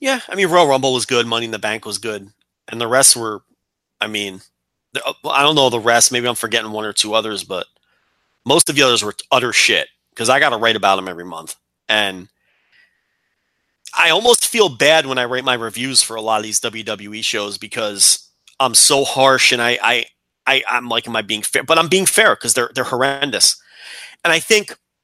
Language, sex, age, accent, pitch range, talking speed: English, male, 30-49, American, 115-170 Hz, 215 wpm